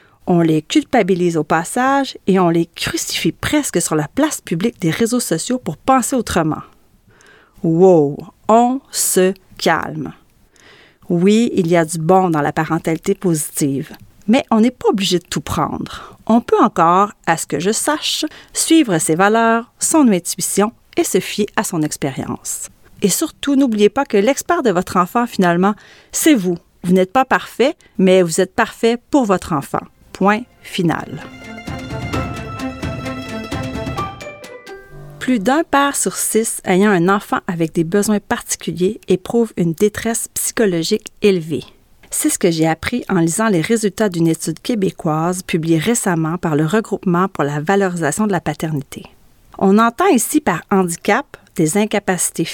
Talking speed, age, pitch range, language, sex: 150 wpm, 40-59, 165-230 Hz, French, female